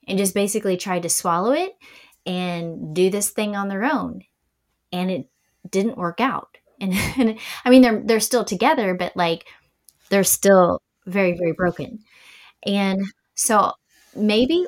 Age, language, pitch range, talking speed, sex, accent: 20-39, English, 185-240 Hz, 150 wpm, female, American